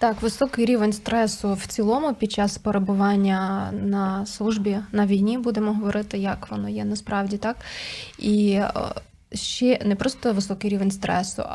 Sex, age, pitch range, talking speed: female, 20-39, 200-220 Hz, 140 wpm